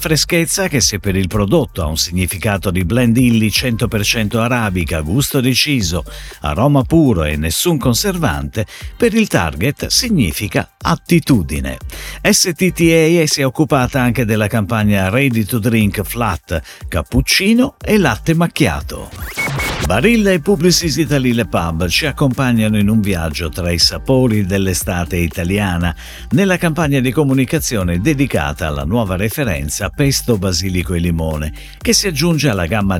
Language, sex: Italian, male